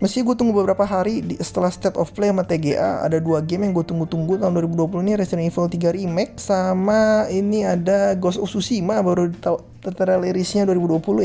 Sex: male